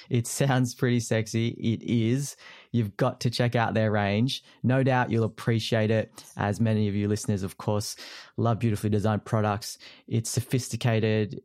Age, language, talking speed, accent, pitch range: 20-39, English, 160 wpm, Australian, 110-135 Hz